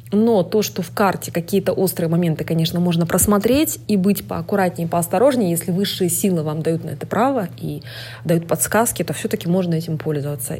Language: Russian